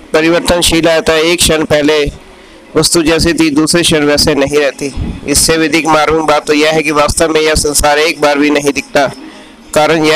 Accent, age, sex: native, 50-69, male